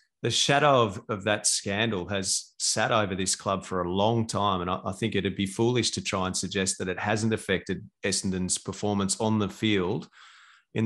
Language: English